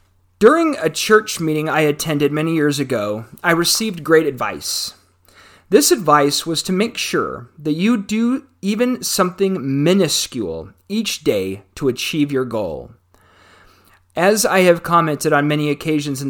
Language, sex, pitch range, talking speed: English, male, 135-190 Hz, 145 wpm